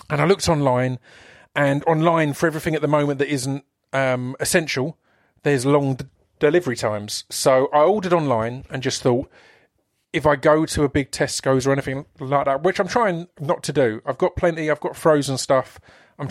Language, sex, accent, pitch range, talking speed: English, male, British, 125-150 Hz, 190 wpm